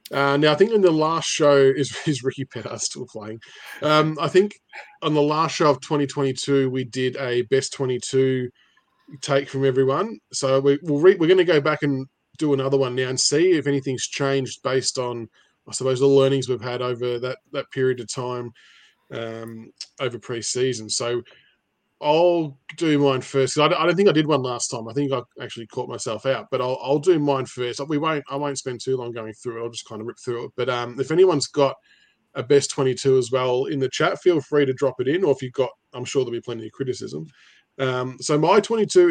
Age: 20-39